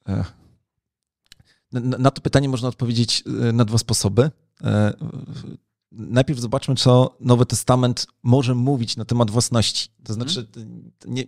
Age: 40-59